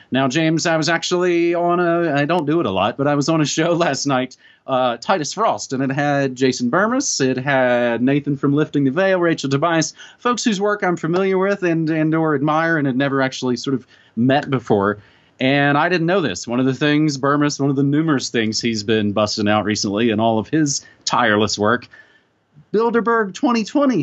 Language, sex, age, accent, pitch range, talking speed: English, male, 30-49, American, 130-165 Hz, 205 wpm